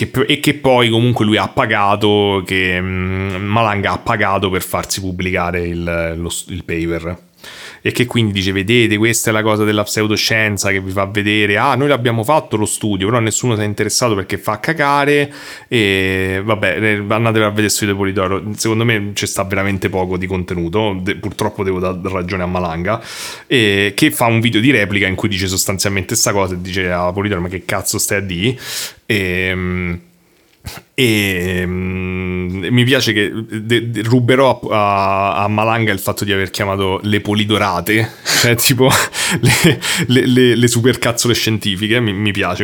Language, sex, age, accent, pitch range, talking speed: Italian, male, 30-49, native, 95-110 Hz, 175 wpm